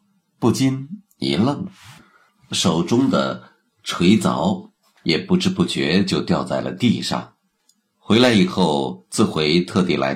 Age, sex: 50-69, male